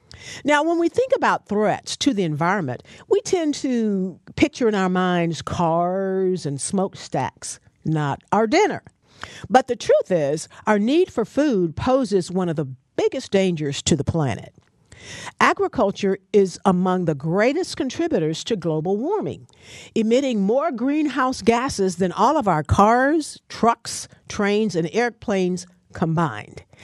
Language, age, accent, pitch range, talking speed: English, 50-69, American, 165-230 Hz, 140 wpm